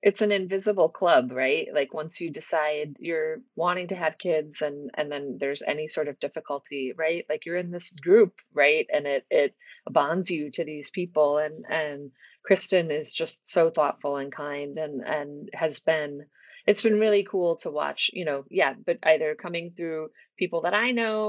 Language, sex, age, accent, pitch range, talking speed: English, female, 30-49, American, 150-185 Hz, 190 wpm